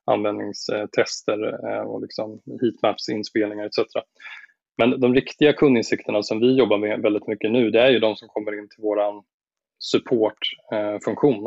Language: Swedish